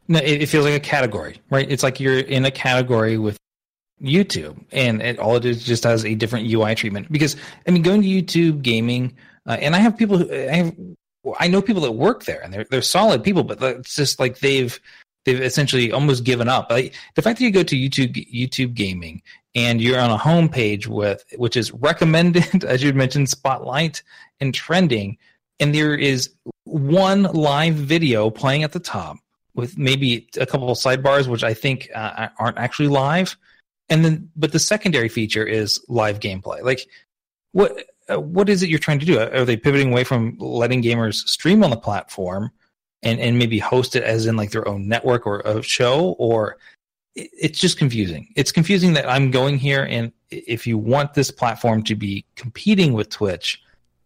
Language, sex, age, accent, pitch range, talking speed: English, male, 30-49, American, 115-155 Hz, 195 wpm